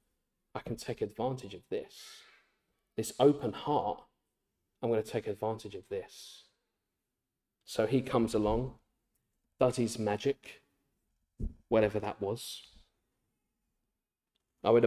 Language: English